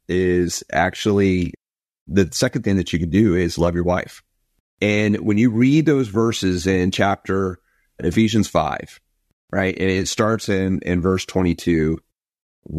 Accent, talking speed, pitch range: American, 145 wpm, 85-110 Hz